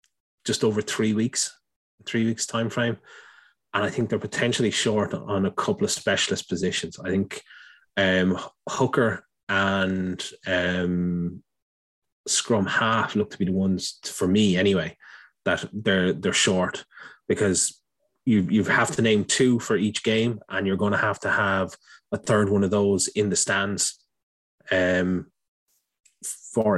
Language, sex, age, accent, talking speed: English, male, 20-39, Irish, 150 wpm